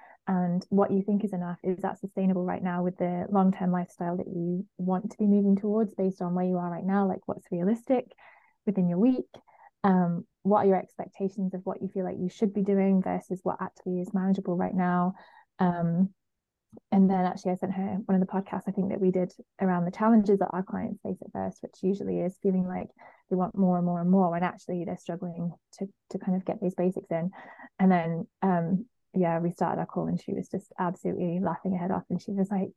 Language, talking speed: English, 230 wpm